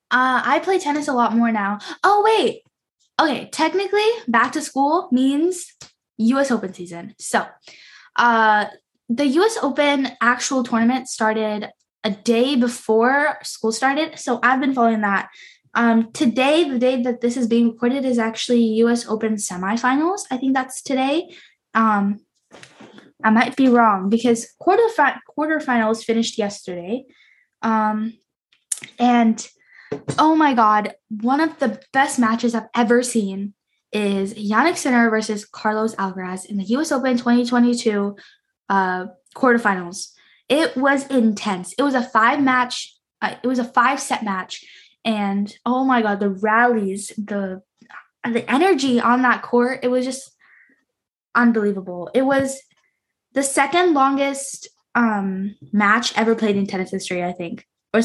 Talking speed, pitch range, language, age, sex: 135 wpm, 215-270 Hz, English, 10-29, female